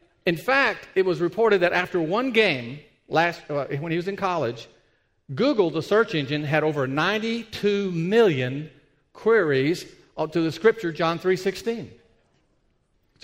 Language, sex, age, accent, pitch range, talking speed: English, male, 50-69, American, 155-220 Hz, 145 wpm